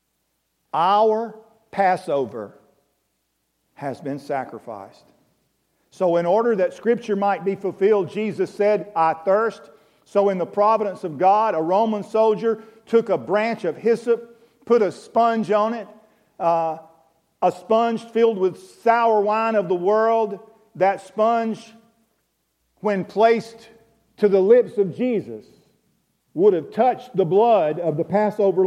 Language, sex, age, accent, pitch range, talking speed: English, male, 50-69, American, 165-220 Hz, 130 wpm